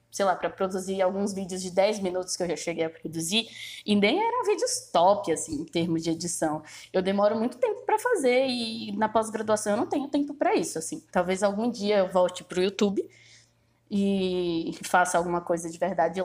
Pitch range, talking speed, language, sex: 175-240 Hz, 205 wpm, Portuguese, female